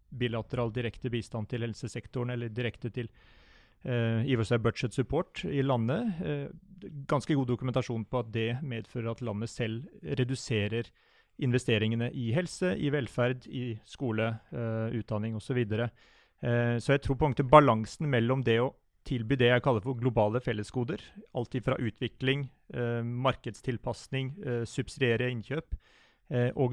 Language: English